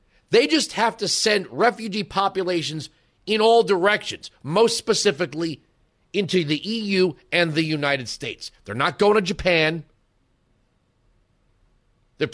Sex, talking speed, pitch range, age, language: male, 120 wpm, 150-245 Hz, 40-59, English